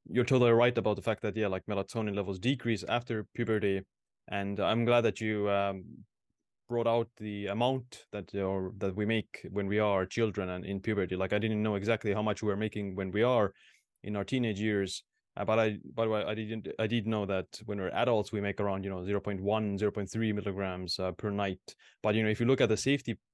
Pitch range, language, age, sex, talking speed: 100-115 Hz, English, 20-39, male, 220 wpm